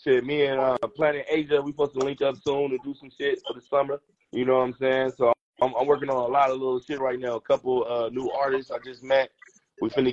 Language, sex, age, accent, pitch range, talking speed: English, male, 30-49, American, 125-140 Hz, 275 wpm